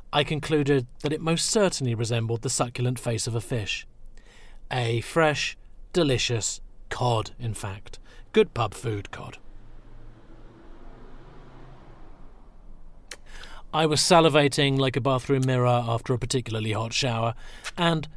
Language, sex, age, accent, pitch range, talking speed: English, male, 40-59, British, 115-155 Hz, 120 wpm